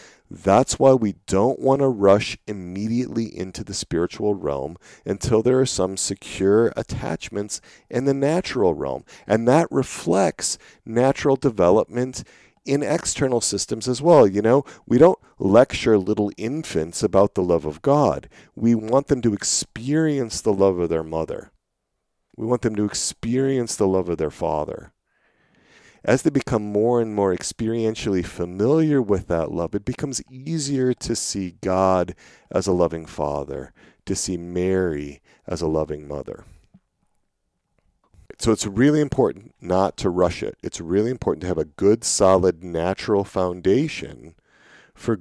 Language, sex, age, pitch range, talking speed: English, male, 40-59, 90-120 Hz, 145 wpm